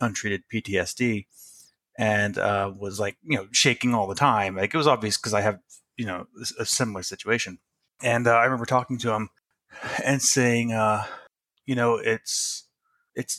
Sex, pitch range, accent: male, 100-125 Hz, American